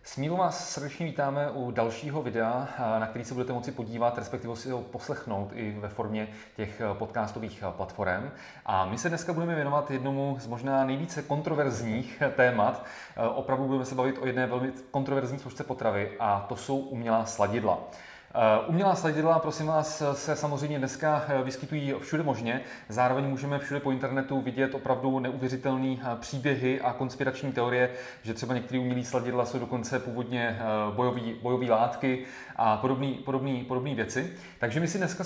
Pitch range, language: 120-140 Hz, Czech